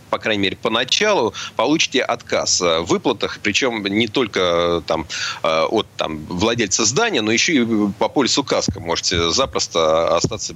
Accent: native